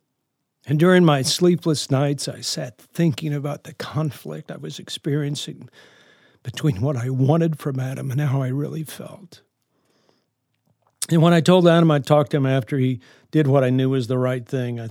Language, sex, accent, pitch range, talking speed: English, male, American, 130-165 Hz, 180 wpm